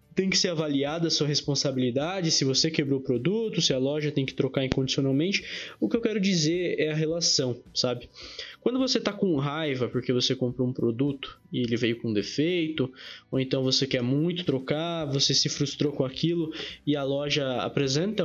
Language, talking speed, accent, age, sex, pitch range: Portuguese, 190 wpm, Brazilian, 20-39, male, 135-175 Hz